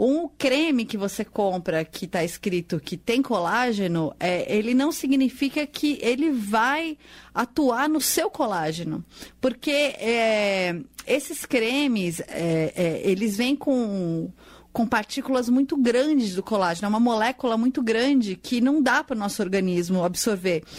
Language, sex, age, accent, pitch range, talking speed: Portuguese, female, 30-49, Brazilian, 190-275 Hz, 145 wpm